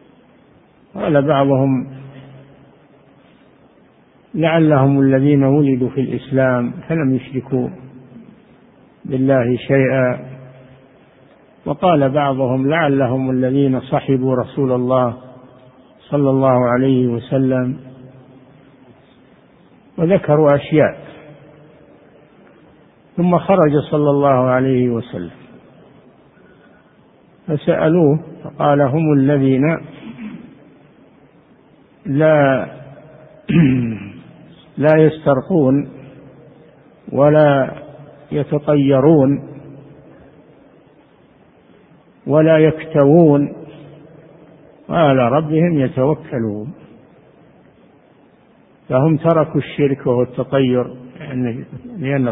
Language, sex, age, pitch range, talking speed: Arabic, male, 60-79, 130-155 Hz, 55 wpm